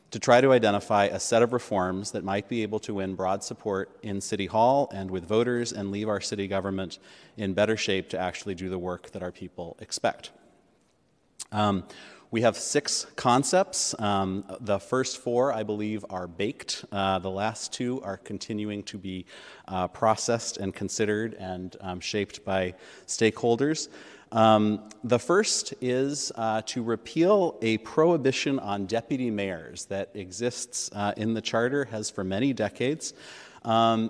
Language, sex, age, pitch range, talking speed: English, male, 30-49, 100-120 Hz, 160 wpm